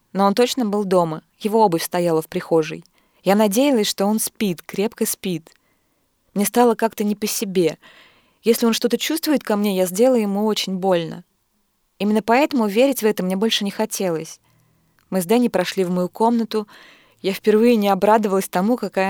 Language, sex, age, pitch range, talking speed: Russian, female, 20-39, 175-215 Hz, 175 wpm